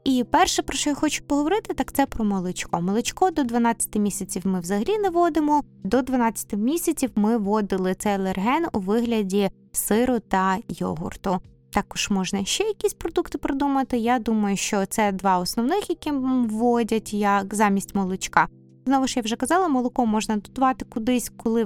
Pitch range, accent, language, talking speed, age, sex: 195-265 Hz, native, Ukrainian, 160 wpm, 20-39, female